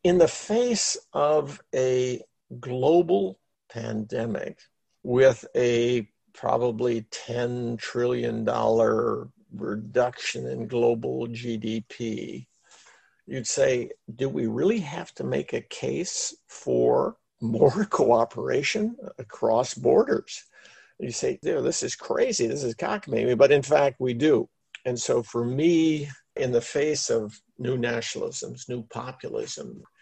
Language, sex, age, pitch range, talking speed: English, male, 50-69, 115-160 Hz, 115 wpm